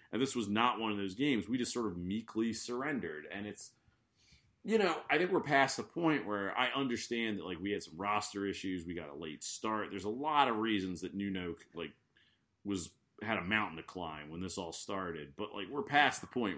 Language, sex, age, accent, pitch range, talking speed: English, male, 30-49, American, 95-120 Hz, 230 wpm